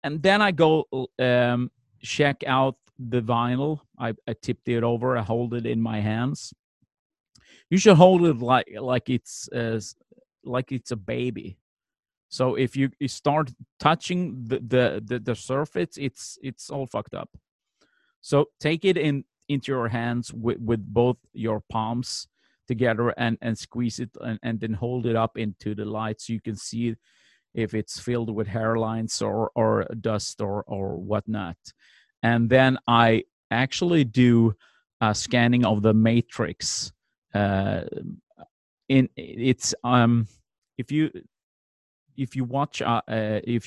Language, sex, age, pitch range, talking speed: English, male, 30-49, 110-130 Hz, 140 wpm